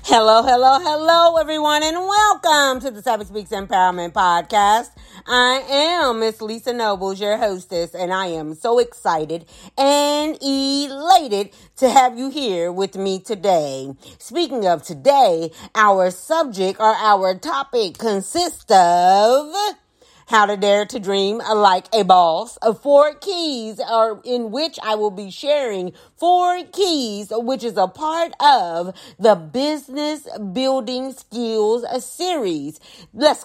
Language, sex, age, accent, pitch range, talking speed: English, female, 40-59, American, 200-285 Hz, 130 wpm